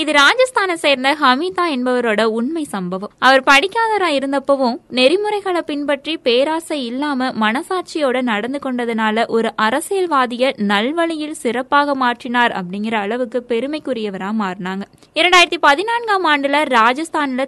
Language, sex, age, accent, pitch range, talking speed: Tamil, female, 20-39, native, 230-300 Hz, 105 wpm